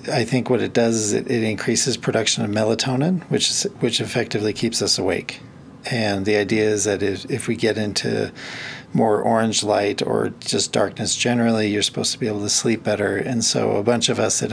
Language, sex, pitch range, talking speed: English, male, 105-120 Hz, 210 wpm